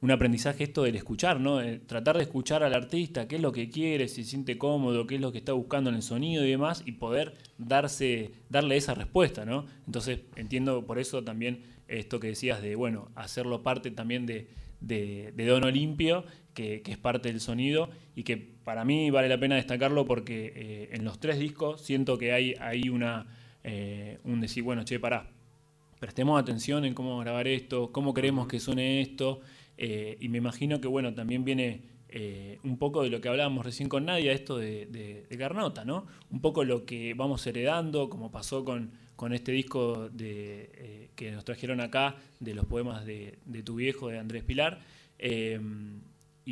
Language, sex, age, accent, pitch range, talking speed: Spanish, male, 20-39, Argentinian, 115-140 Hz, 195 wpm